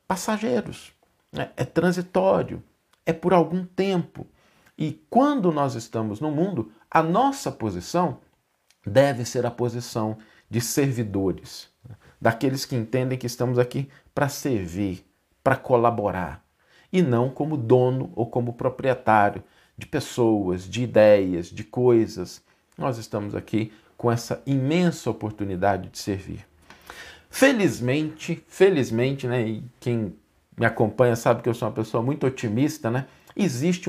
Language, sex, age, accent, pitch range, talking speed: Portuguese, male, 50-69, Brazilian, 110-155 Hz, 125 wpm